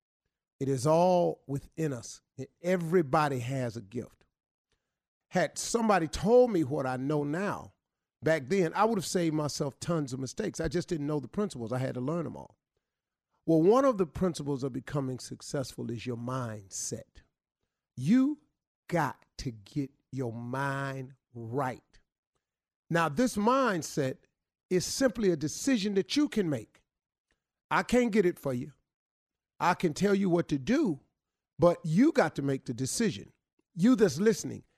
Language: English